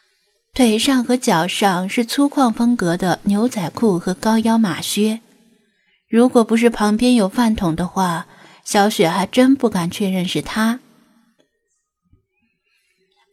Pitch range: 195-250 Hz